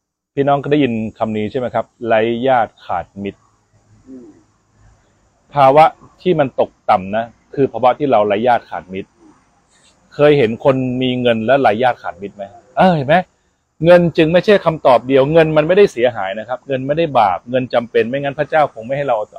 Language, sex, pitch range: Thai, male, 115-165 Hz